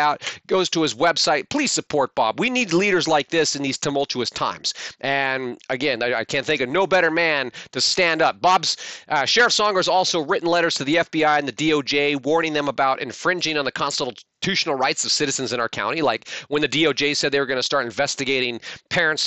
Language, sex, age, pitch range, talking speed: English, male, 30-49, 140-175 Hz, 215 wpm